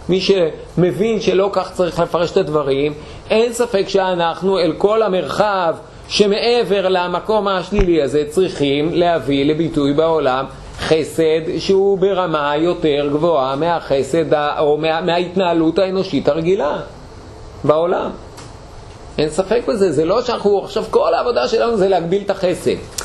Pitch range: 145-190 Hz